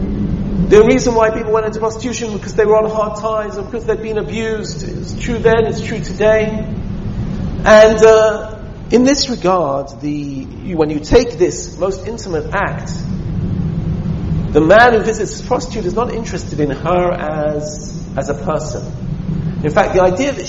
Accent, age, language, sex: British, 50-69, English, male